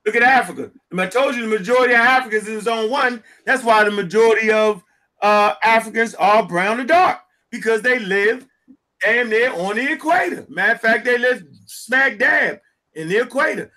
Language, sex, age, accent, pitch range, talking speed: English, male, 30-49, American, 210-265 Hz, 185 wpm